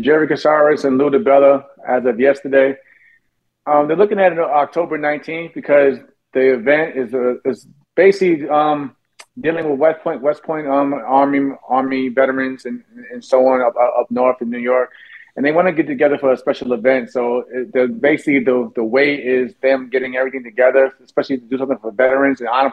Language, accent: English, American